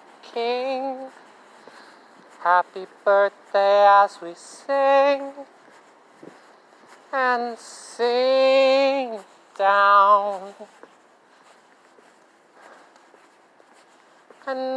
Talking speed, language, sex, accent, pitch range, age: 40 wpm, English, male, American, 200-255 Hz, 40-59